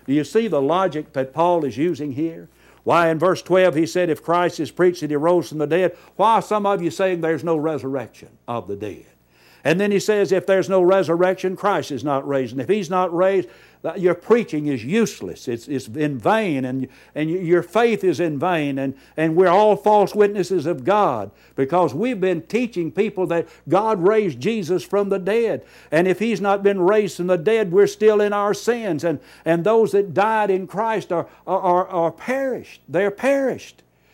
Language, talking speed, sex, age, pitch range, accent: English, 205 wpm, male, 60-79, 135-190 Hz, American